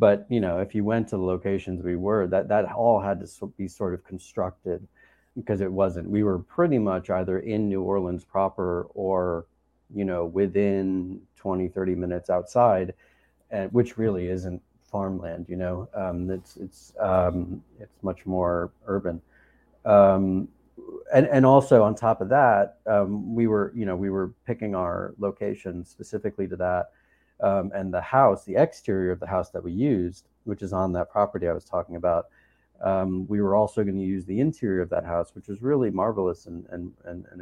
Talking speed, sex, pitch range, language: 185 wpm, male, 90-105 Hz, English